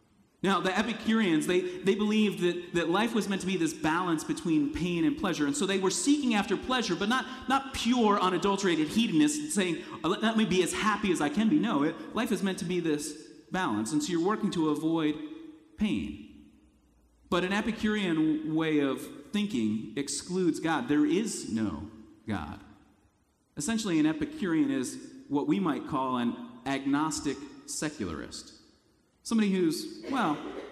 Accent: American